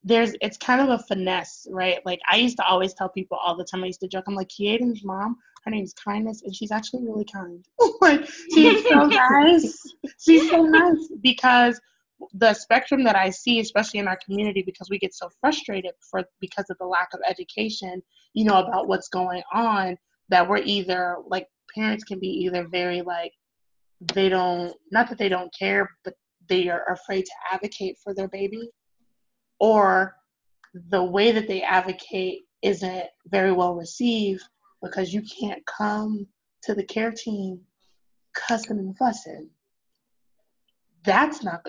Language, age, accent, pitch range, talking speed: English, 20-39, American, 185-230 Hz, 170 wpm